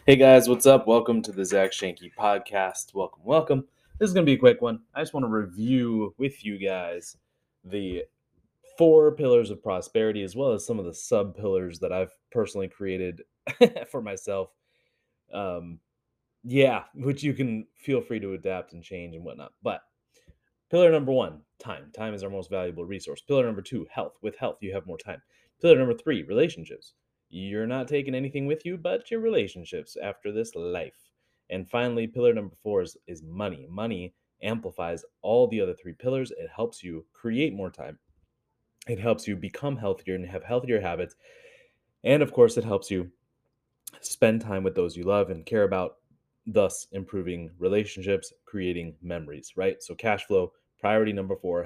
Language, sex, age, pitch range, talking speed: English, male, 20-39, 95-140 Hz, 180 wpm